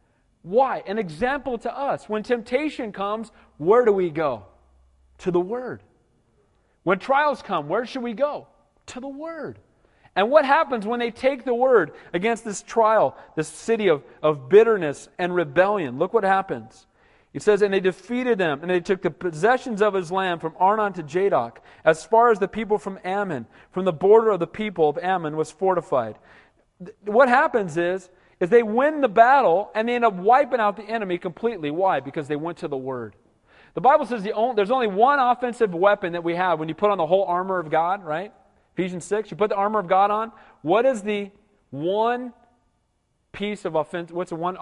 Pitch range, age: 170-230 Hz, 40-59